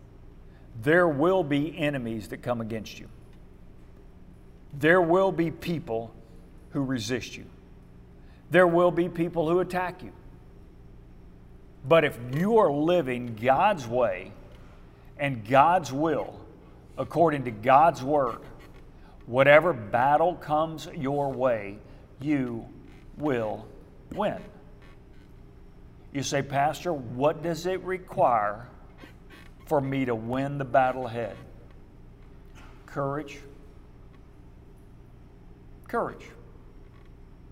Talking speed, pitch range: 95 wpm, 115-165 Hz